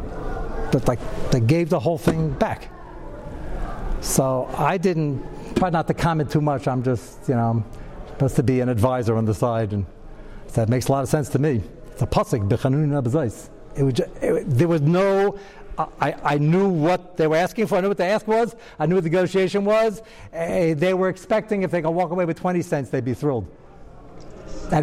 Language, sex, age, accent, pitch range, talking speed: English, male, 60-79, American, 125-170 Hz, 205 wpm